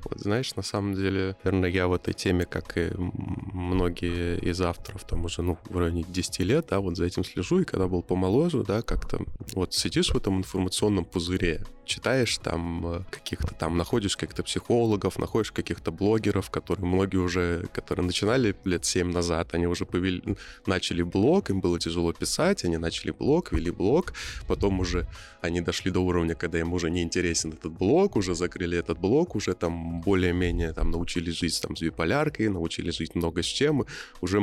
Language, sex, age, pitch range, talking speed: Russian, male, 20-39, 85-105 Hz, 180 wpm